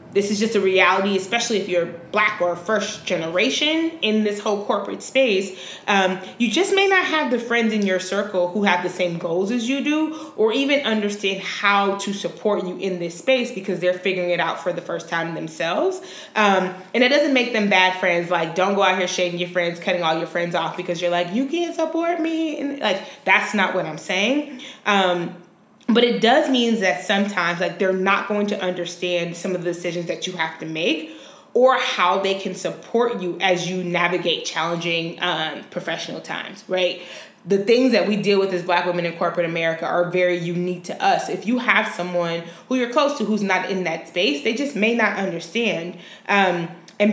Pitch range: 175-215 Hz